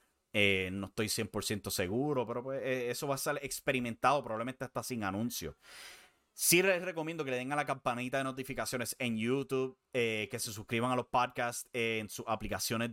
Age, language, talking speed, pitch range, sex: 30-49, English, 195 wpm, 110-135 Hz, male